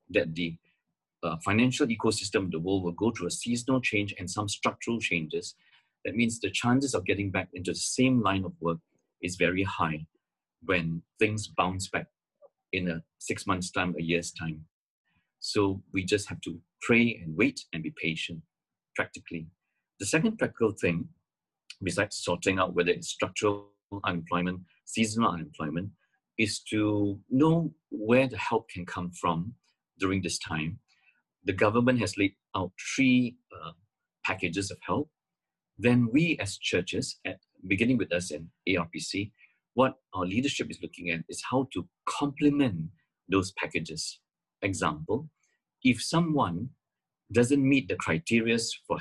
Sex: male